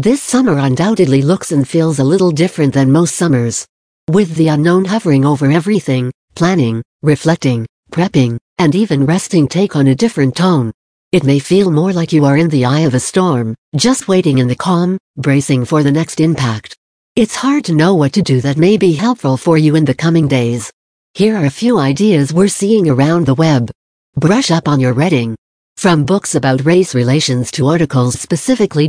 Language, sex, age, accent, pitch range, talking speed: English, female, 60-79, American, 135-185 Hz, 190 wpm